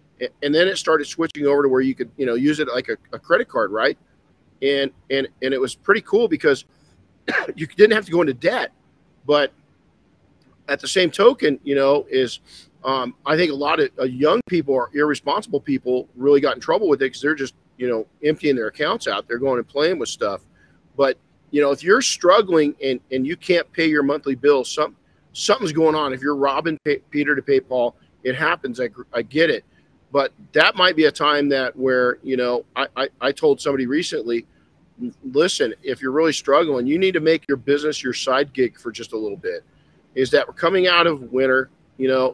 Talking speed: 215 wpm